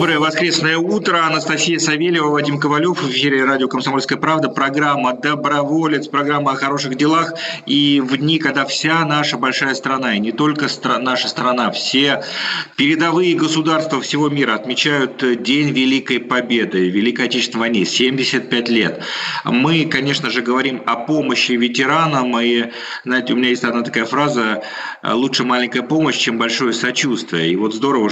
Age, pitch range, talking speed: 40-59, 115-145 Hz, 145 wpm